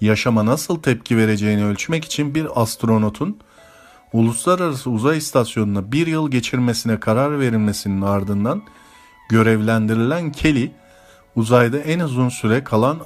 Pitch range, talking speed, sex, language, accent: 105-135 Hz, 110 wpm, male, Turkish, native